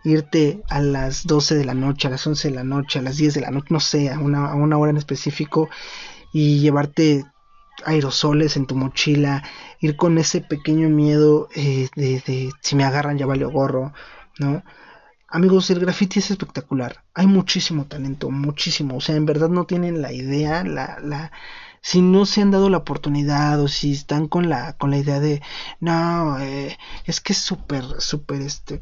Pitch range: 140-165 Hz